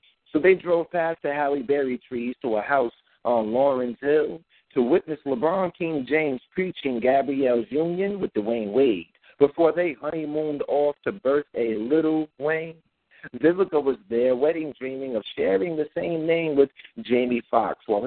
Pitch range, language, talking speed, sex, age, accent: 135-180 Hz, English, 160 wpm, male, 50-69, American